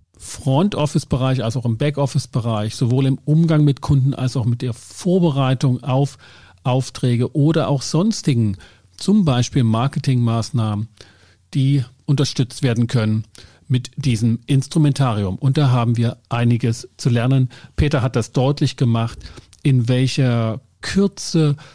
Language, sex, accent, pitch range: German, male, German, 115-145 Hz